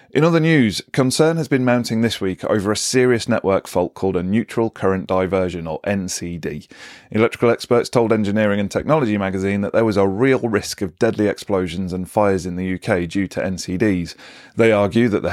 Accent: British